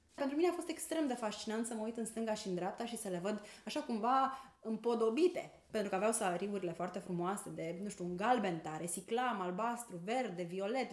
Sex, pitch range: female, 185-255 Hz